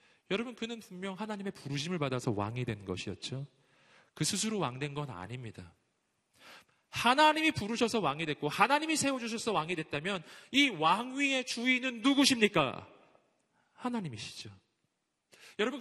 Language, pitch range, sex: Korean, 125-180 Hz, male